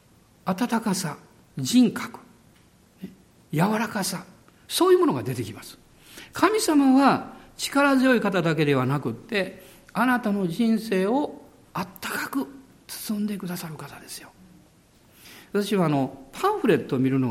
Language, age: Japanese, 50-69